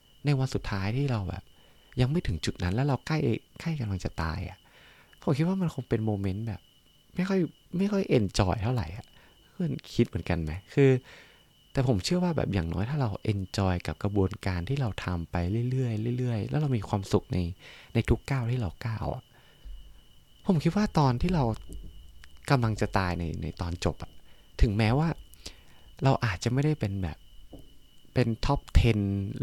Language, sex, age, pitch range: Thai, male, 20-39, 85-130 Hz